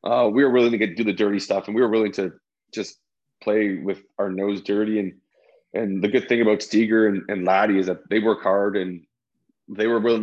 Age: 20-39